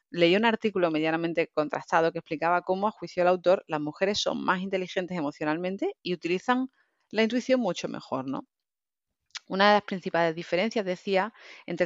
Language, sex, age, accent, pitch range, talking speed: Spanish, female, 30-49, Spanish, 155-210 Hz, 160 wpm